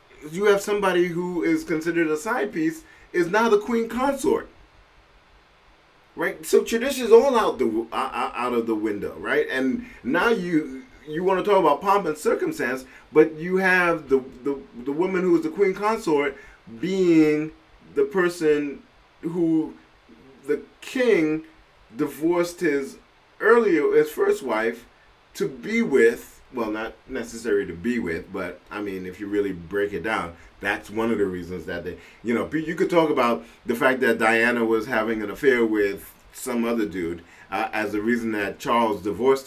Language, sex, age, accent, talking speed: English, male, 30-49, American, 170 wpm